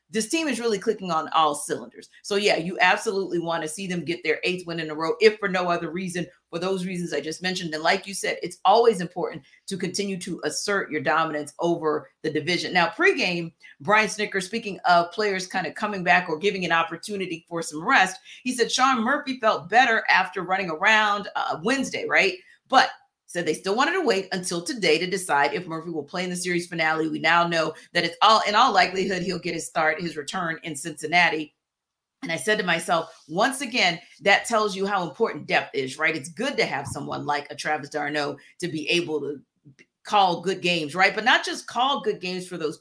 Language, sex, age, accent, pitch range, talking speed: English, female, 40-59, American, 160-200 Hz, 220 wpm